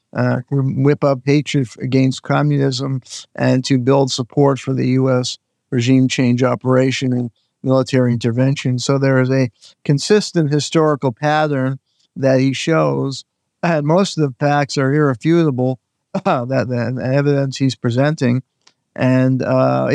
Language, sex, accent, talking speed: English, male, American, 130 wpm